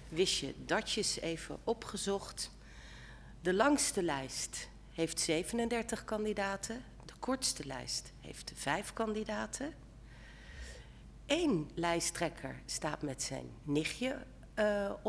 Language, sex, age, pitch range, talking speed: Dutch, female, 50-69, 145-220 Hz, 100 wpm